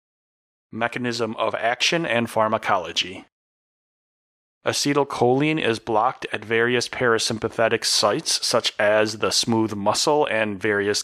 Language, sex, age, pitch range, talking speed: English, male, 30-49, 110-130 Hz, 105 wpm